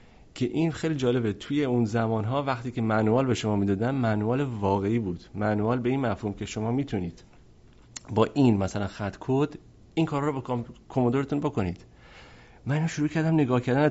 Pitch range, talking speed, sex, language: 105-135 Hz, 175 wpm, male, Persian